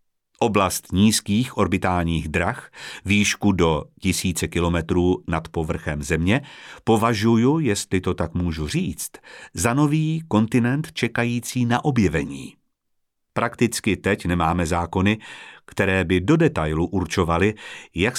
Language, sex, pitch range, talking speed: Czech, male, 90-135 Hz, 110 wpm